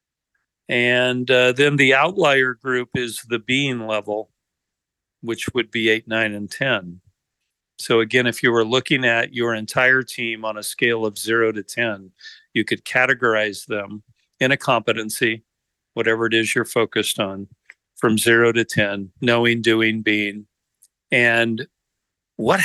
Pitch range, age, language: 110-125 Hz, 50-69, English